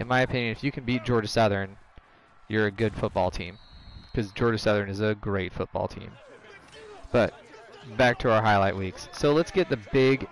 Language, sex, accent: English, male, American